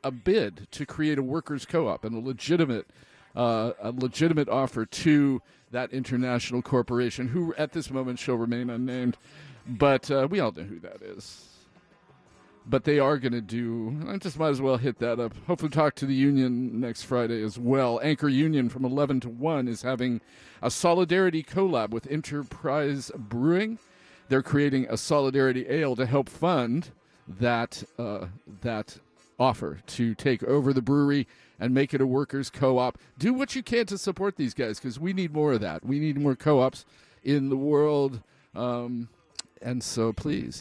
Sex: male